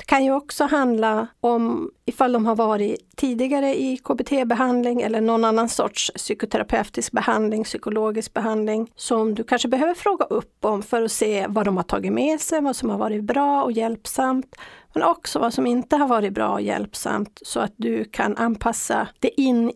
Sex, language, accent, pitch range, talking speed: female, English, Swedish, 220-275 Hz, 185 wpm